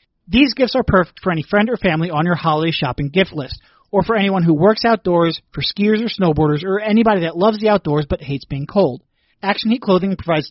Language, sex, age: English, male, 30-49